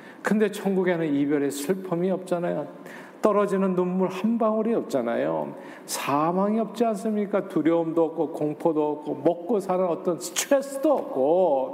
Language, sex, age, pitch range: Korean, male, 50-69, 145-185 Hz